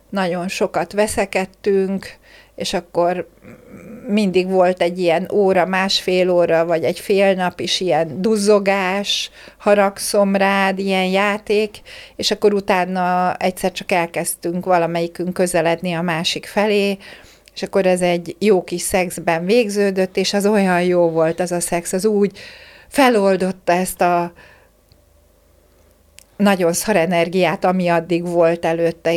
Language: Hungarian